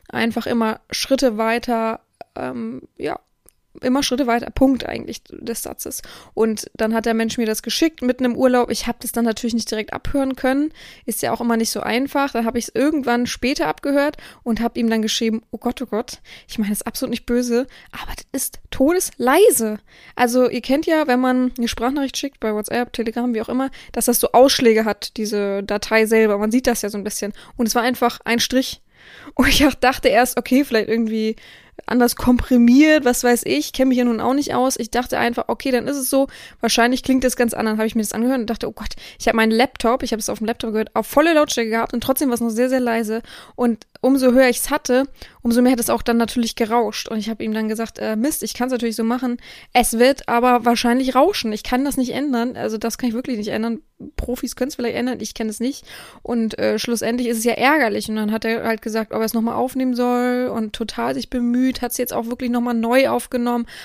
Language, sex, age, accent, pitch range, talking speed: German, female, 20-39, German, 230-255 Hz, 235 wpm